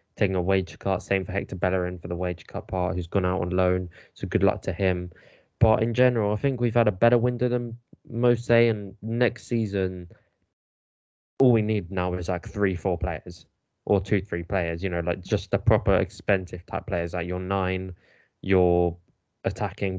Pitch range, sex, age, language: 95-110 Hz, male, 20-39, English